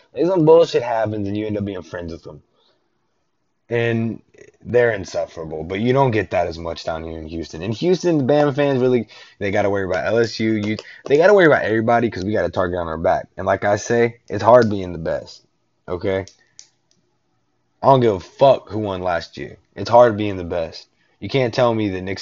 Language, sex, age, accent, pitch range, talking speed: English, male, 20-39, American, 95-125 Hz, 220 wpm